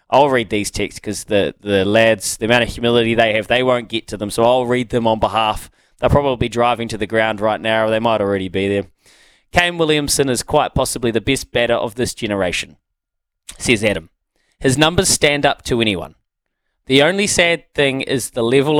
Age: 20-39